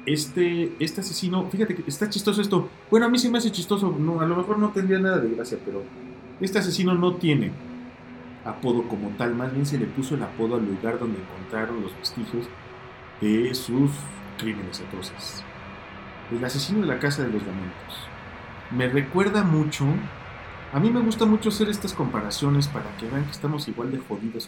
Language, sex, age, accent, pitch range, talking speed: Spanish, male, 40-59, Mexican, 110-175 Hz, 185 wpm